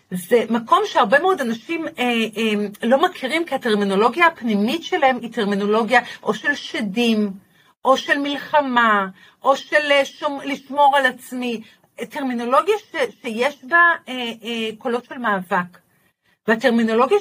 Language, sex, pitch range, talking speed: Hebrew, female, 225-300 Hz, 125 wpm